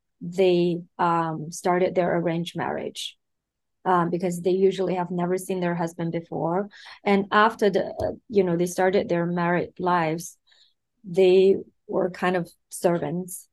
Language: English